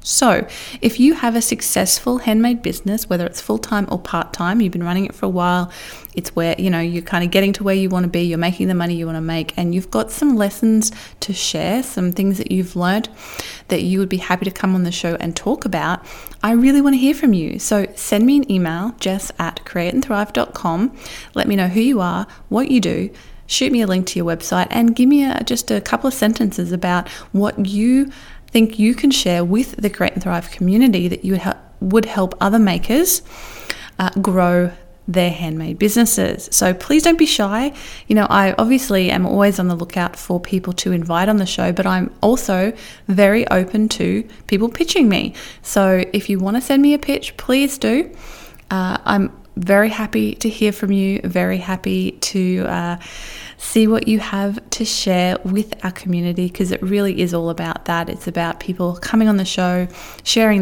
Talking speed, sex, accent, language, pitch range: 205 wpm, female, Australian, English, 175-220 Hz